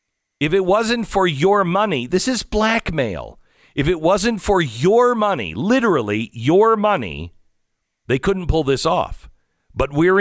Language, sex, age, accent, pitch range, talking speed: English, male, 50-69, American, 110-180 Hz, 145 wpm